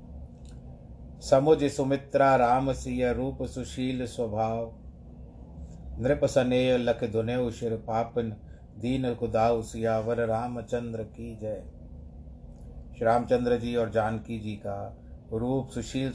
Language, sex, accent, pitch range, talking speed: Hindi, male, native, 80-130 Hz, 95 wpm